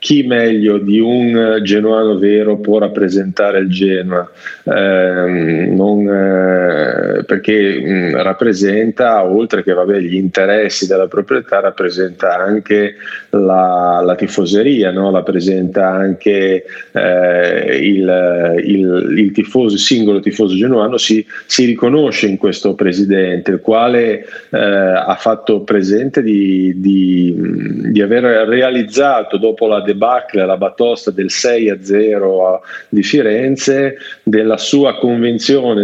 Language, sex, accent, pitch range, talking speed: Italian, male, native, 95-115 Hz, 115 wpm